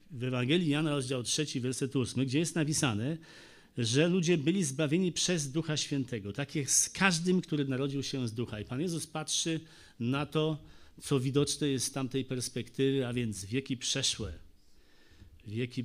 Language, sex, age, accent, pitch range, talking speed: Polish, male, 40-59, native, 125-155 Hz, 165 wpm